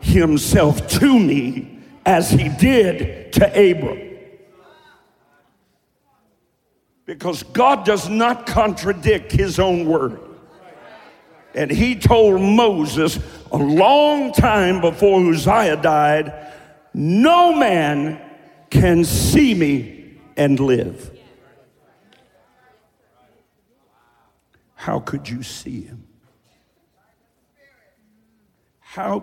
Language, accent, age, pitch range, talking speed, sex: English, American, 50-69, 130-195 Hz, 80 wpm, male